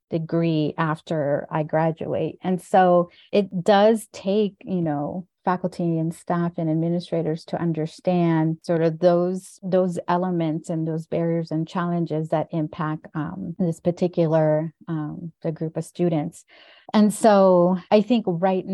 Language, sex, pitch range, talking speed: English, female, 155-180 Hz, 140 wpm